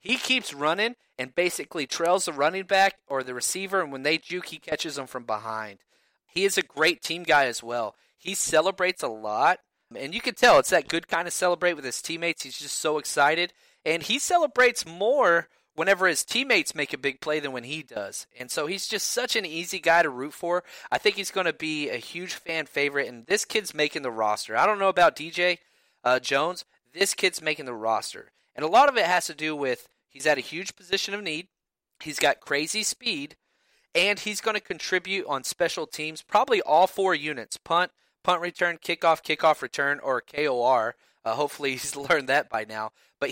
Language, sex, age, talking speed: English, male, 30-49, 210 wpm